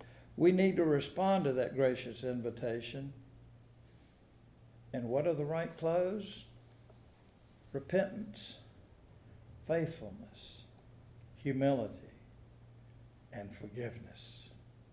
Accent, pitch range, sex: American, 115-150 Hz, male